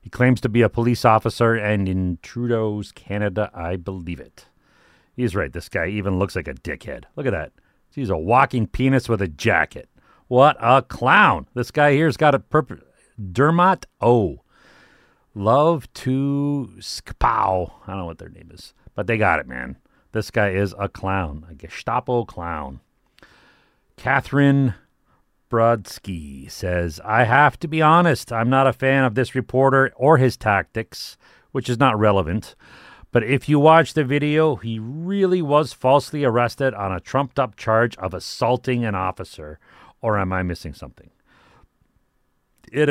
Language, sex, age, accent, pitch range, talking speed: English, male, 40-59, American, 95-135 Hz, 160 wpm